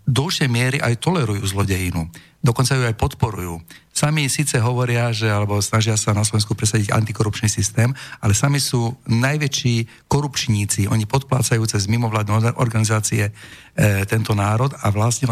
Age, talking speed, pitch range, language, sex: 50-69, 140 wpm, 110-125 Hz, Slovak, male